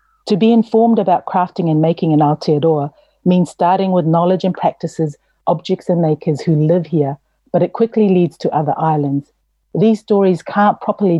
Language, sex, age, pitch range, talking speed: English, female, 40-59, 155-190 Hz, 170 wpm